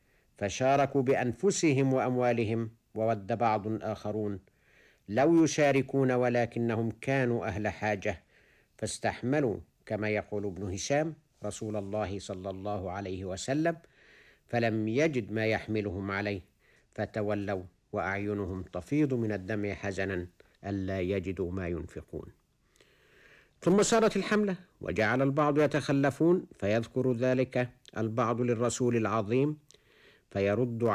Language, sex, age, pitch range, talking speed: Arabic, male, 60-79, 100-140 Hz, 95 wpm